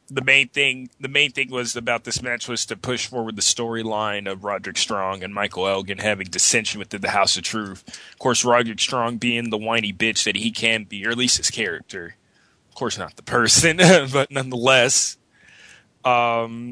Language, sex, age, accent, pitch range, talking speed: English, male, 20-39, American, 105-125 Hz, 195 wpm